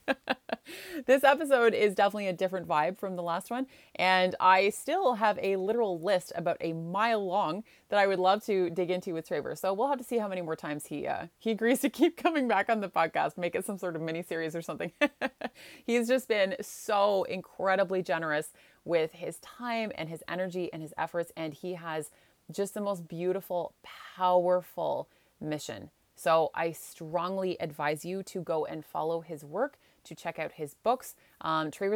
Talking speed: 190 wpm